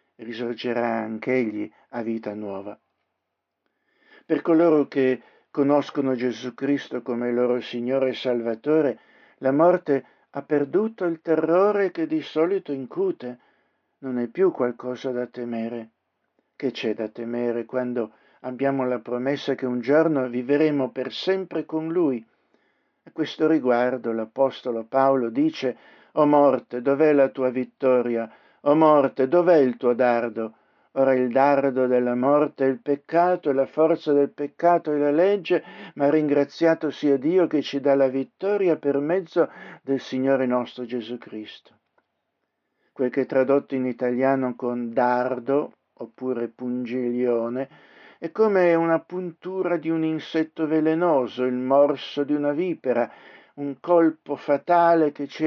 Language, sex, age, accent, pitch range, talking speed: Italian, male, 60-79, native, 125-155 Hz, 140 wpm